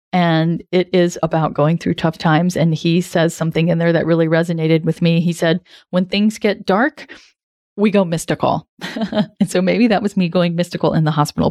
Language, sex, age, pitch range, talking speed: English, female, 30-49, 170-250 Hz, 205 wpm